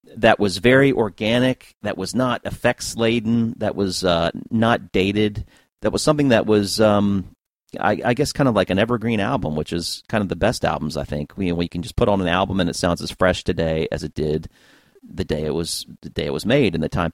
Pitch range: 90-110 Hz